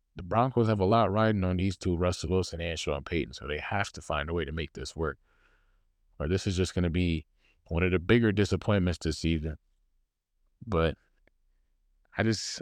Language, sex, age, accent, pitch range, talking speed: English, male, 20-39, American, 80-110 Hz, 200 wpm